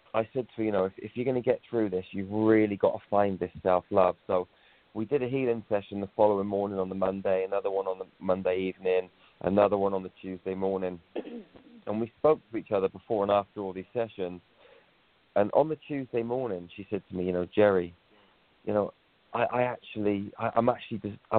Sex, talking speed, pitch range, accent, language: male, 215 wpm, 95-115 Hz, British, English